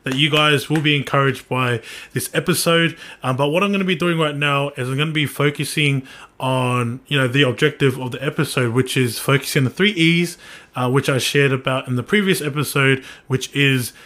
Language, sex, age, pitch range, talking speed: English, male, 20-39, 130-160 Hz, 220 wpm